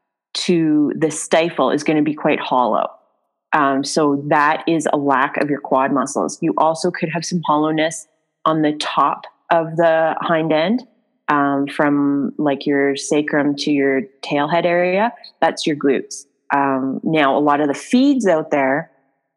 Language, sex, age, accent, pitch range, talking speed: English, female, 30-49, American, 145-180 Hz, 165 wpm